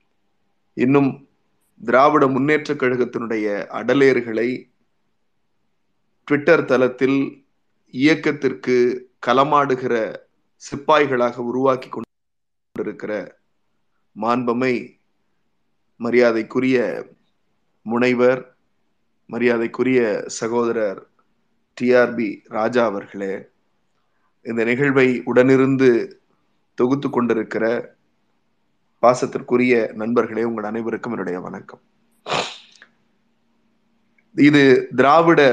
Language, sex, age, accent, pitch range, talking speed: Tamil, male, 20-39, native, 120-150 Hz, 55 wpm